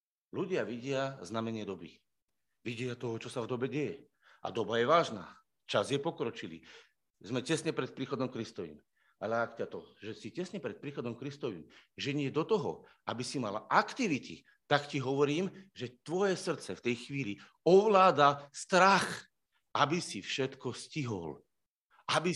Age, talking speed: 50-69, 155 wpm